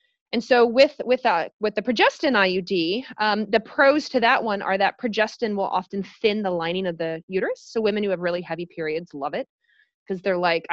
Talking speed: 215 wpm